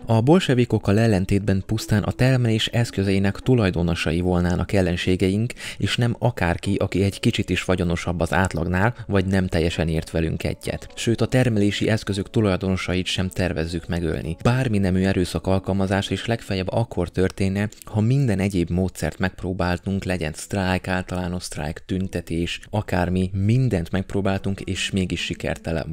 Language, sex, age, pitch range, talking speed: Hungarian, male, 20-39, 85-110 Hz, 135 wpm